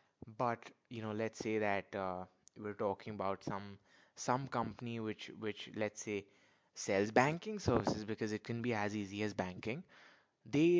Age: 20-39